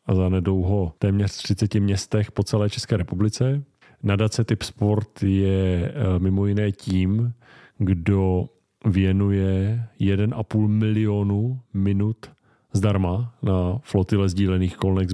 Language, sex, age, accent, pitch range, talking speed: Czech, male, 40-59, native, 90-105 Hz, 110 wpm